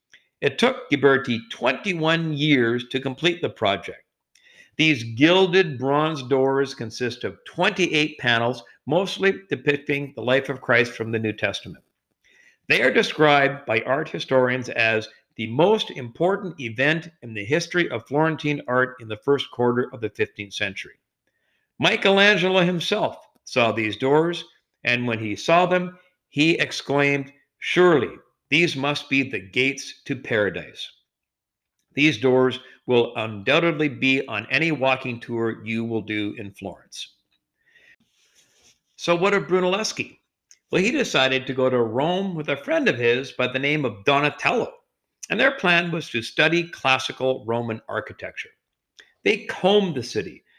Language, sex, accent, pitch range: English, male, American, 120-170 Hz